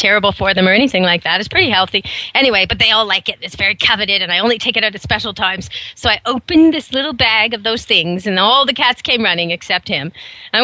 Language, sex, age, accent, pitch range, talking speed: English, female, 40-59, American, 210-265 Hz, 260 wpm